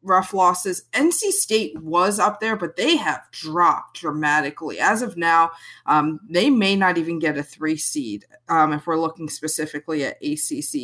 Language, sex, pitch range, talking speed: English, female, 155-205 Hz, 170 wpm